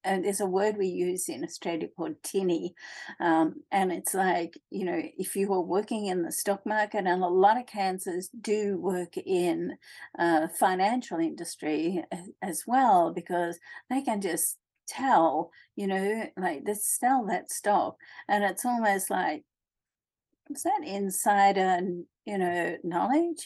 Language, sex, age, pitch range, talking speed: English, female, 50-69, 190-260 Hz, 150 wpm